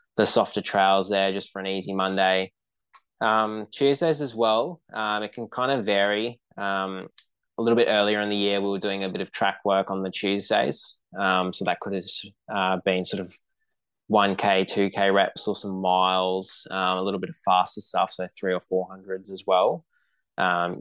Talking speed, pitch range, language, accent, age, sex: 195 wpm, 90-105 Hz, English, Australian, 20-39, male